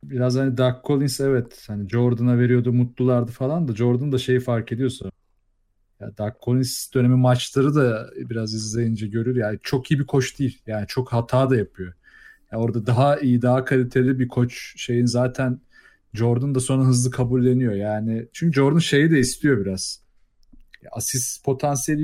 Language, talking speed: Turkish, 165 wpm